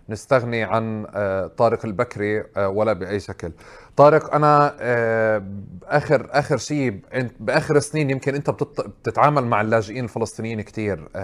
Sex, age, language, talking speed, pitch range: male, 20-39, Arabic, 110 wpm, 110-140 Hz